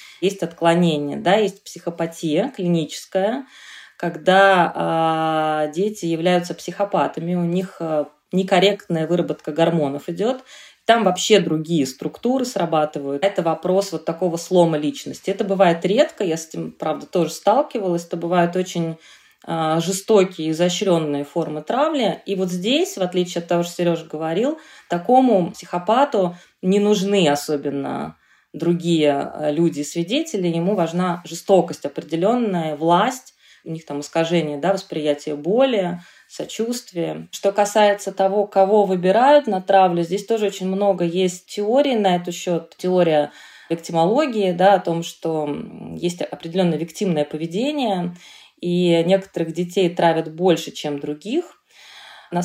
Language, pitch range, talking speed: Russian, 160-195 Hz, 125 wpm